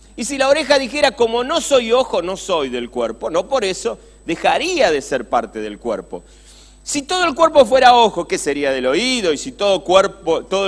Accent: Argentinian